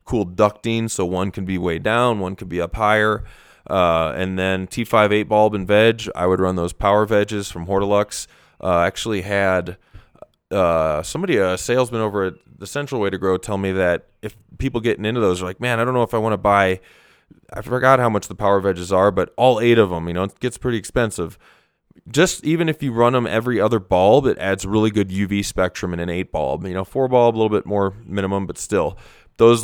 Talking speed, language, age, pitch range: 225 wpm, English, 20-39, 90-105 Hz